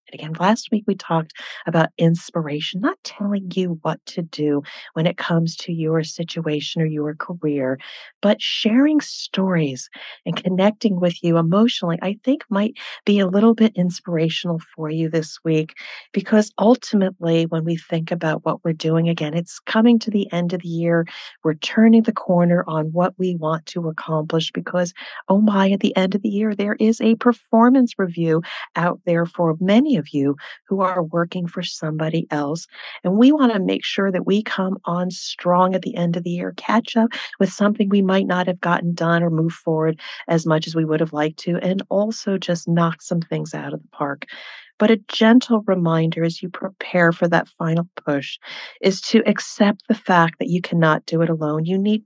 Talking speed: 195 wpm